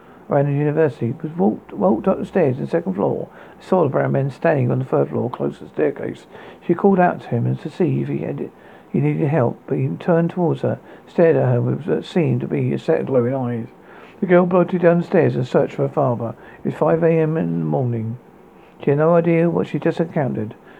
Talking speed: 245 wpm